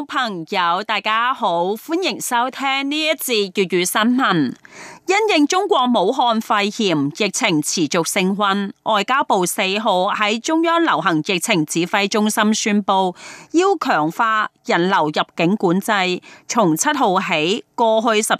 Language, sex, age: Chinese, female, 30-49